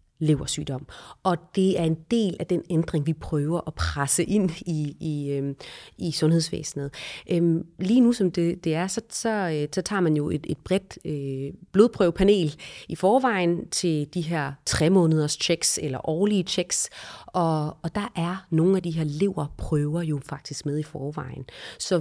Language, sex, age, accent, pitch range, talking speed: Danish, female, 30-49, native, 155-195 Hz, 170 wpm